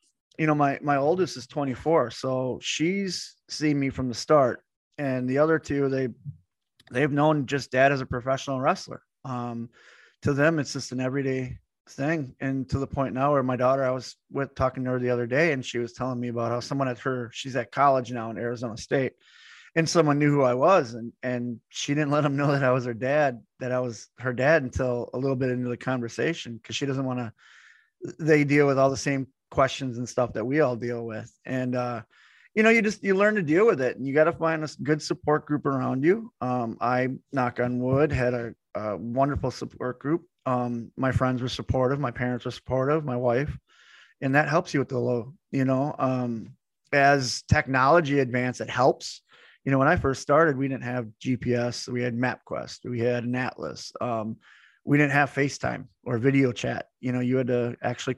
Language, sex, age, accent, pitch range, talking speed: English, male, 20-39, American, 125-145 Hz, 215 wpm